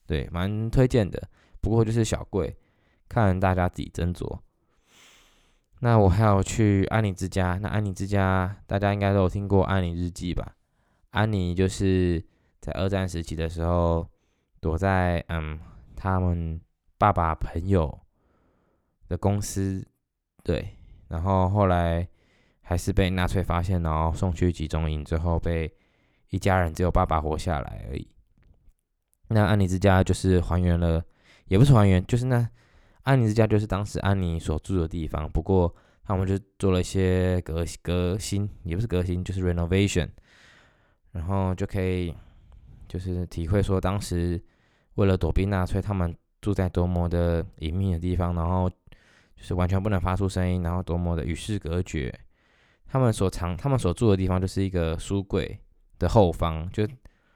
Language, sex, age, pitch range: English, male, 10-29, 85-100 Hz